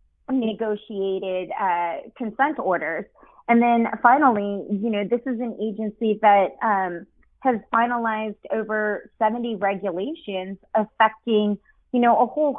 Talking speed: 120 wpm